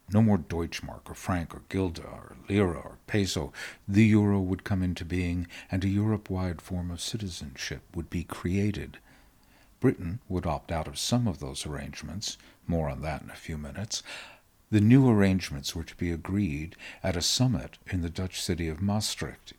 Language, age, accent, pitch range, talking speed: English, 60-79, American, 85-105 Hz, 180 wpm